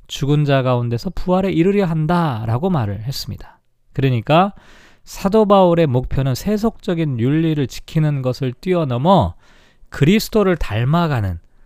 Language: Korean